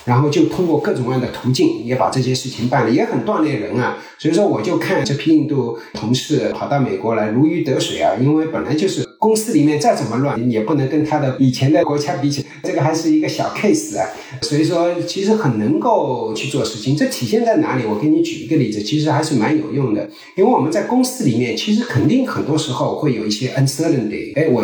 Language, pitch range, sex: Chinese, 125-170 Hz, male